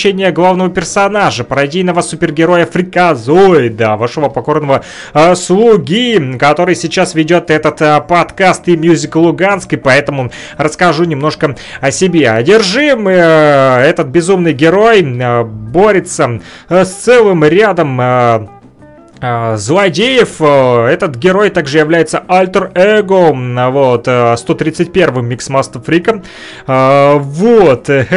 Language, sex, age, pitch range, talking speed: Russian, male, 30-49, 150-190 Hz, 95 wpm